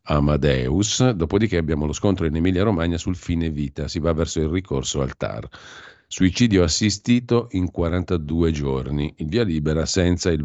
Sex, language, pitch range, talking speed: male, Italian, 70-90 Hz, 155 wpm